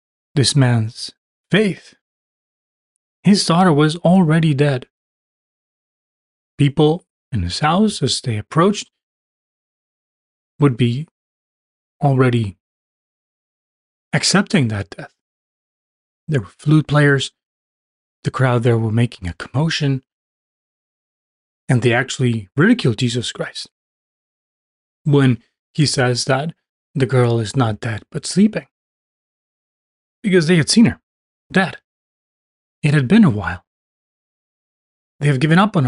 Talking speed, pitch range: 110 wpm, 115-155 Hz